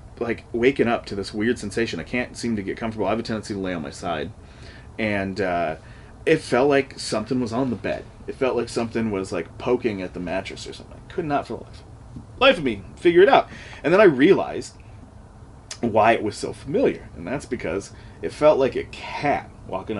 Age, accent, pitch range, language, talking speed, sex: 30-49, American, 100-130 Hz, English, 220 wpm, male